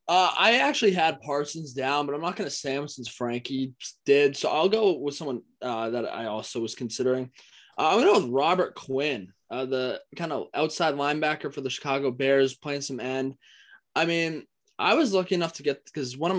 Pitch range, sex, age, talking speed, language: 130-160 Hz, male, 20-39, 210 wpm, English